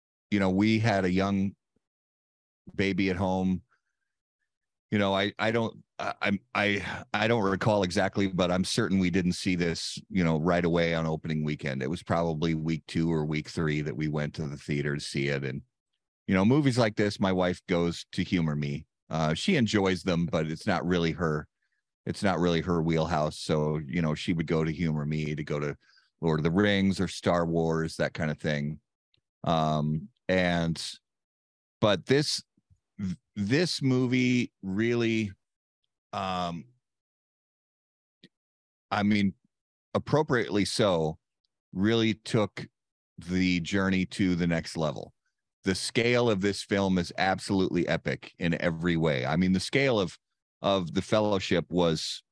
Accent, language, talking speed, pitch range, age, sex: American, English, 160 wpm, 80-100 Hz, 40-59, male